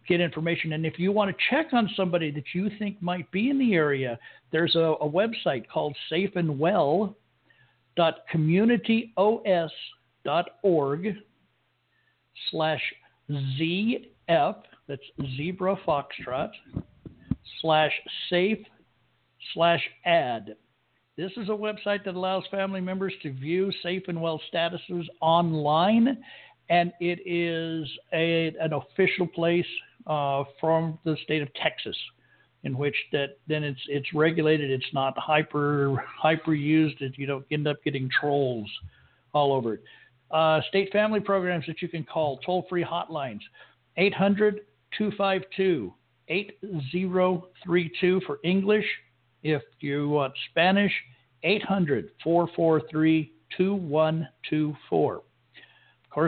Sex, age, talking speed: male, 60-79, 120 wpm